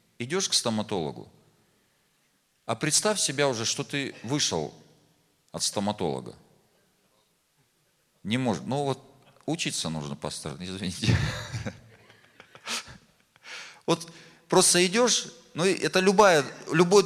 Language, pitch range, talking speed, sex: Russian, 115-175 Hz, 95 wpm, male